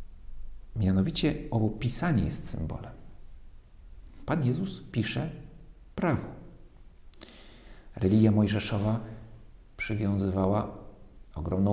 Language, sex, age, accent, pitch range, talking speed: Polish, male, 50-69, native, 90-120 Hz, 65 wpm